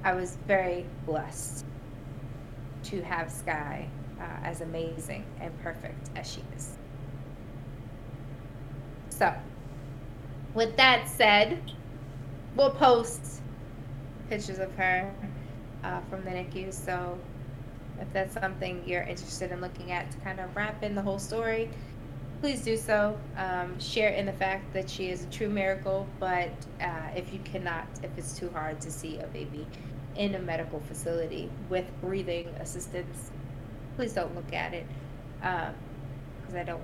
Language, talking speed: English, 145 wpm